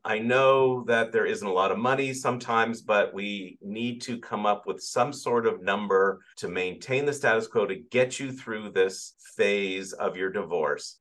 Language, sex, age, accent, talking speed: English, male, 50-69, American, 190 wpm